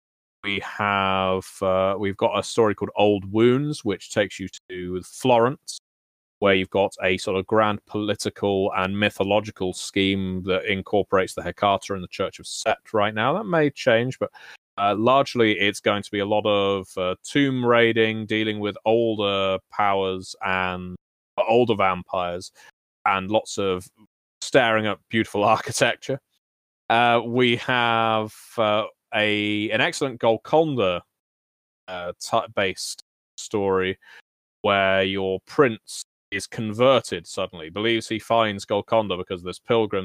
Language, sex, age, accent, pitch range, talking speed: English, male, 30-49, British, 95-110 Hz, 140 wpm